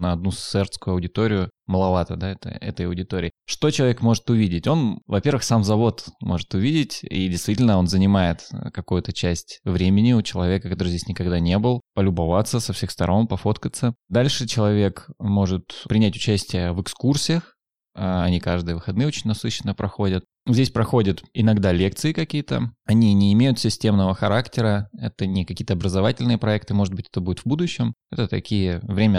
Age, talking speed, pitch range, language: 20-39, 155 wpm, 95-120 Hz, Russian